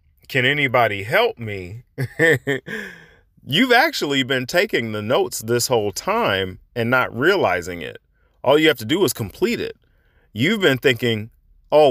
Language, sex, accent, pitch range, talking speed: English, male, American, 105-135 Hz, 145 wpm